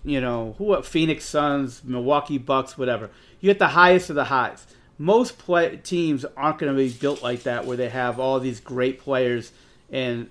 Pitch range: 125-145 Hz